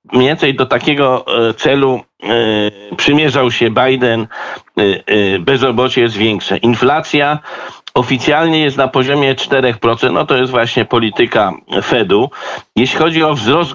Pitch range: 125-150 Hz